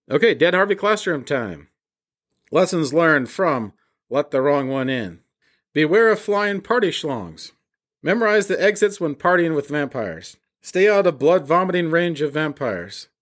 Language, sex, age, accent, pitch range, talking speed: English, male, 40-59, American, 145-180 Hz, 145 wpm